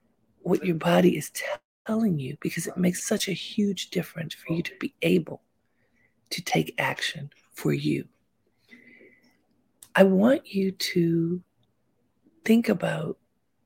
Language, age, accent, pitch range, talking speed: English, 40-59, American, 170-220 Hz, 125 wpm